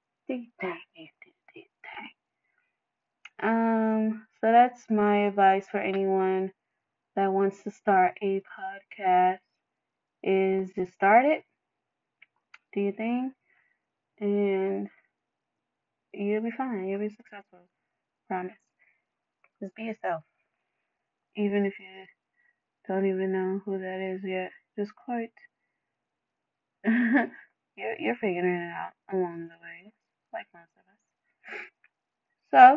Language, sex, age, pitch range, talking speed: English, female, 20-39, 190-235 Hz, 100 wpm